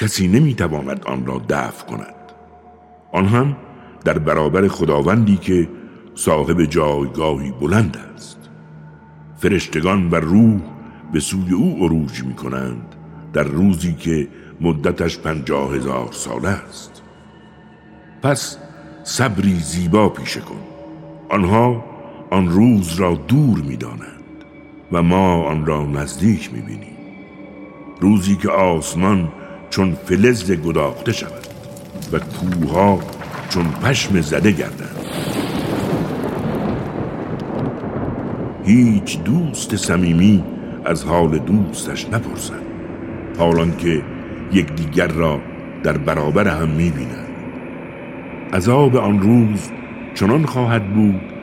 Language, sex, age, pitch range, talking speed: Persian, male, 60-79, 75-100 Hz, 100 wpm